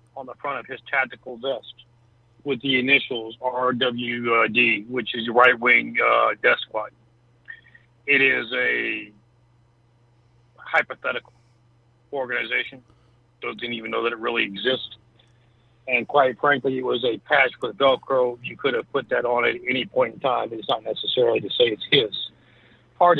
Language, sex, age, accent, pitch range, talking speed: English, male, 60-79, American, 120-140 Hz, 155 wpm